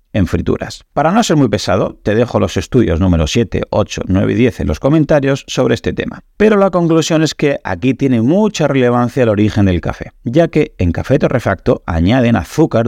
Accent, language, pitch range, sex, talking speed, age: Spanish, Spanish, 95-140 Hz, male, 200 wpm, 40-59